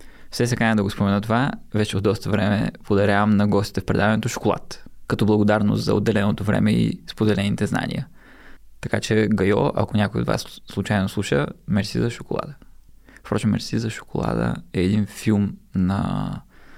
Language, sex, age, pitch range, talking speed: Bulgarian, male, 20-39, 100-125 Hz, 160 wpm